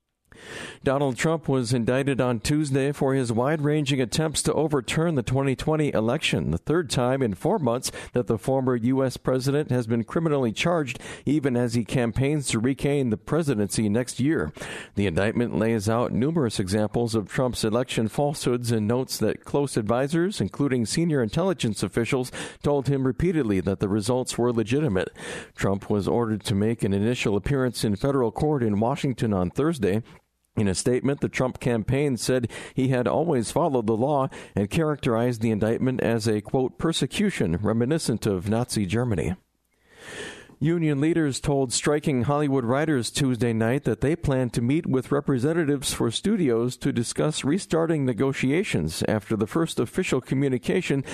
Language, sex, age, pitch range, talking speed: English, male, 50-69, 115-145 Hz, 155 wpm